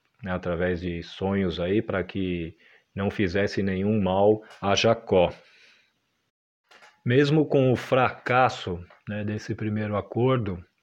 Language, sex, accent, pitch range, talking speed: Portuguese, male, Brazilian, 100-120 Hz, 105 wpm